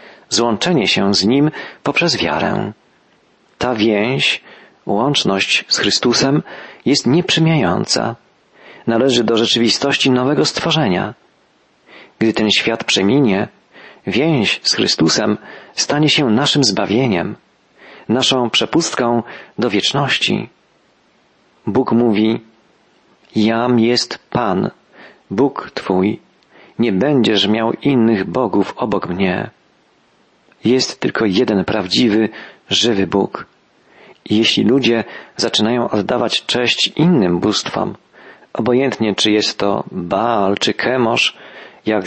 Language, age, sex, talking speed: Polish, 40-59, male, 100 wpm